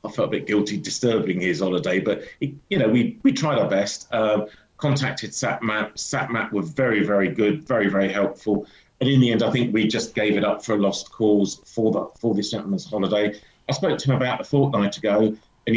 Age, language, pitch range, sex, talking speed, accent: 40-59, English, 105-120 Hz, male, 220 wpm, British